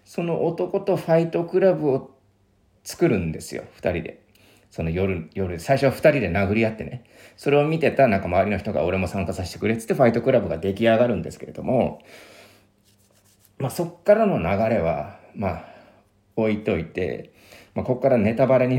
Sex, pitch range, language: male, 95-160 Hz, Japanese